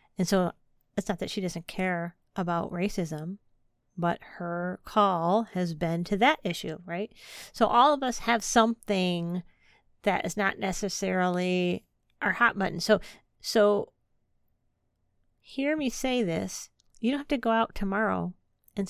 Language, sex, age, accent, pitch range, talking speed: English, female, 40-59, American, 180-225 Hz, 145 wpm